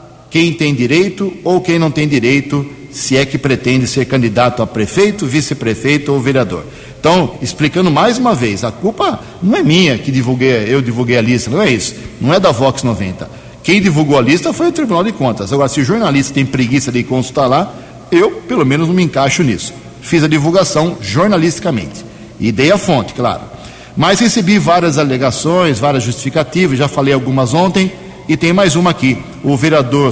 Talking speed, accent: 185 wpm, Brazilian